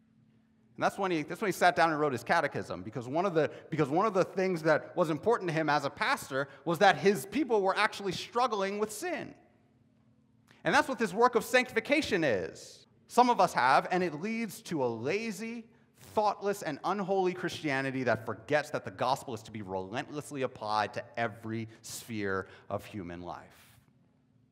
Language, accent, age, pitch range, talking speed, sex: English, American, 30-49, 115-180 Hz, 190 wpm, male